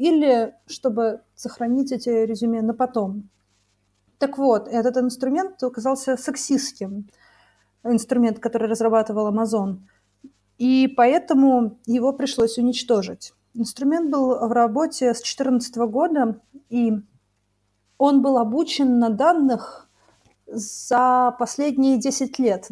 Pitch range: 225-260 Hz